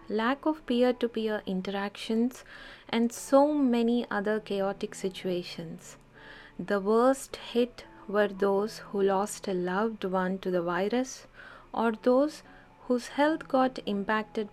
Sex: female